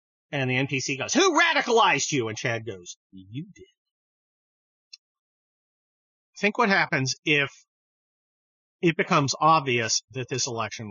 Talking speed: 120 wpm